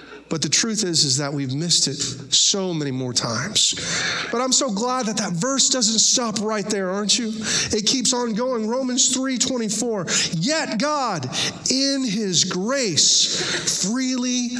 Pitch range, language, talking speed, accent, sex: 170-255 Hz, English, 155 wpm, American, male